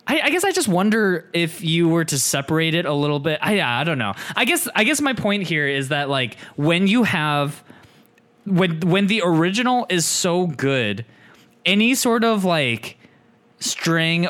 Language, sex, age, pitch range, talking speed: English, male, 20-39, 130-180 Hz, 190 wpm